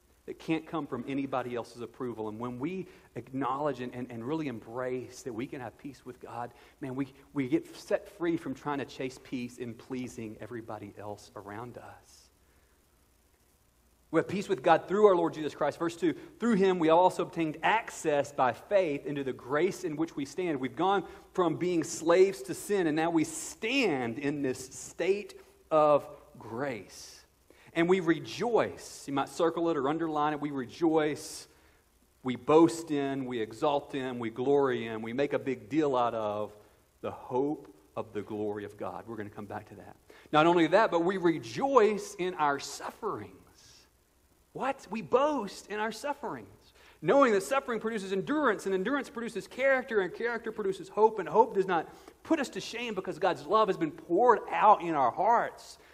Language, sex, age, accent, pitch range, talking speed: English, male, 40-59, American, 120-190 Hz, 185 wpm